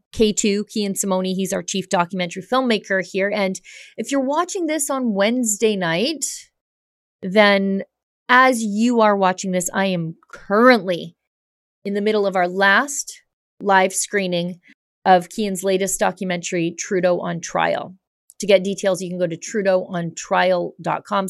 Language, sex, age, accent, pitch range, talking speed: English, female, 30-49, American, 180-210 Hz, 140 wpm